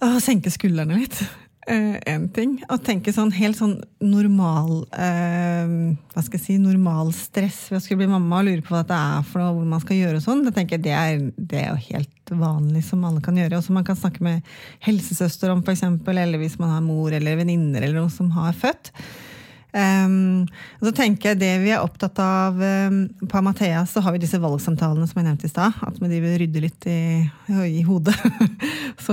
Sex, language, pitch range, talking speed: female, English, 165-200 Hz, 205 wpm